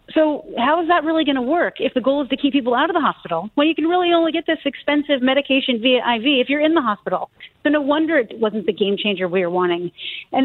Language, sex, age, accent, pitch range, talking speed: English, female, 40-59, American, 260-340 Hz, 270 wpm